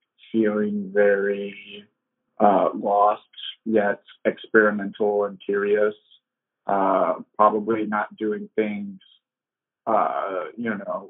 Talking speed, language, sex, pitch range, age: 85 wpm, English, male, 105-120 Hz, 20-39